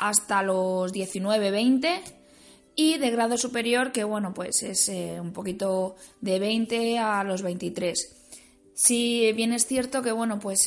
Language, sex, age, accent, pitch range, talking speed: Spanish, female, 20-39, Spanish, 195-235 Hz, 145 wpm